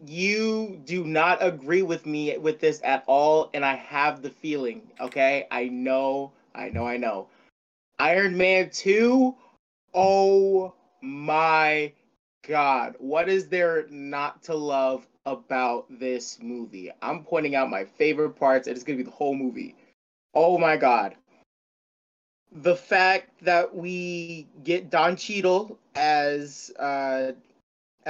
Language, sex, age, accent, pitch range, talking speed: English, male, 30-49, American, 135-175 Hz, 135 wpm